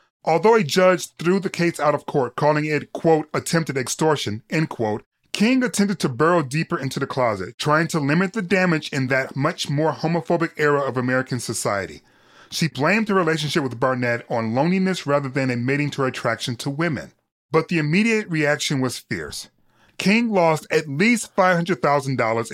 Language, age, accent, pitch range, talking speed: English, 30-49, American, 135-175 Hz, 175 wpm